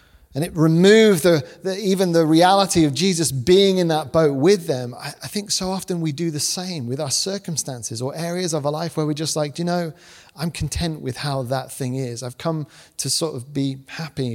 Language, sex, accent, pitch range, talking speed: English, male, British, 130-165 Hz, 215 wpm